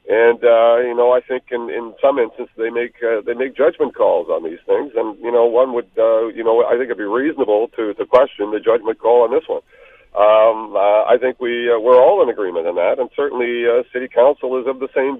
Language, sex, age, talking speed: English, male, 50-69, 255 wpm